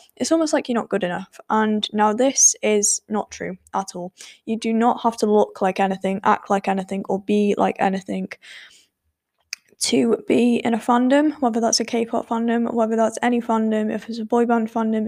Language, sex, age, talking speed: English, female, 10-29, 200 wpm